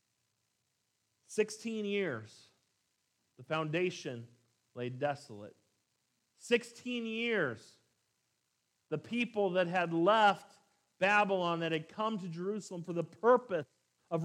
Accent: American